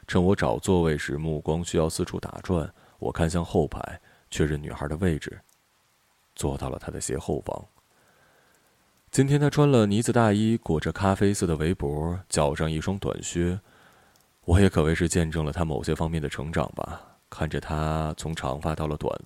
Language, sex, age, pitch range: Chinese, male, 20-39, 75-95 Hz